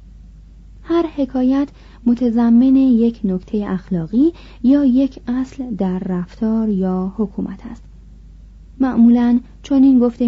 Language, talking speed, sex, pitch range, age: Persian, 105 wpm, female, 185-250 Hz, 30-49